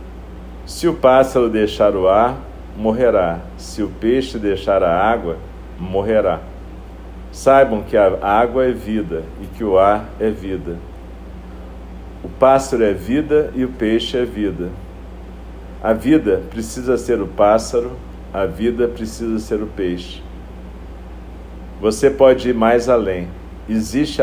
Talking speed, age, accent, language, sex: 130 wpm, 50-69, Brazilian, Portuguese, male